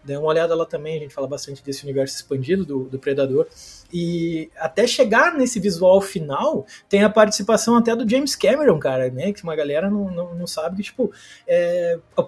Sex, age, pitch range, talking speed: male, 20-39, 165-210 Hz, 195 wpm